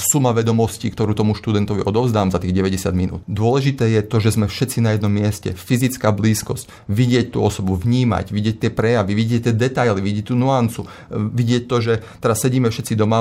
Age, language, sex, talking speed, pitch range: 30-49, Slovak, male, 185 wpm, 105-125 Hz